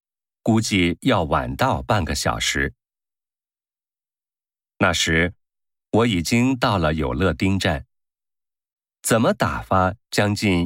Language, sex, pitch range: Japanese, male, 85-115 Hz